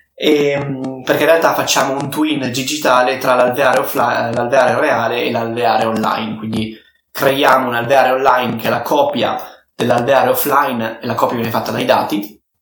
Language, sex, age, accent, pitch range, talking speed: Italian, male, 20-39, native, 120-140 Hz, 160 wpm